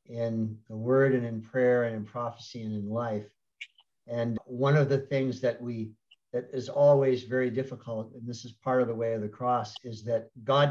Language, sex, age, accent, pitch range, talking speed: English, male, 50-69, American, 115-130 Hz, 205 wpm